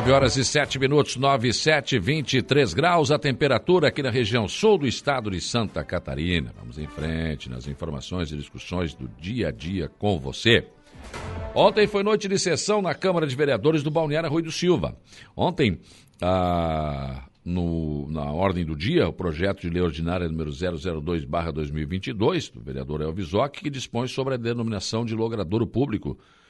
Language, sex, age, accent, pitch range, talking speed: Portuguese, male, 60-79, Brazilian, 85-125 Hz, 165 wpm